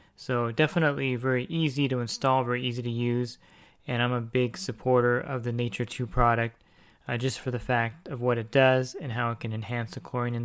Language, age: English, 20-39